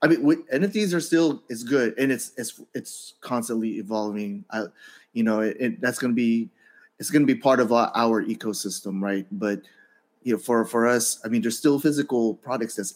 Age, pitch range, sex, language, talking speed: 30-49, 110-140 Hz, male, English, 200 wpm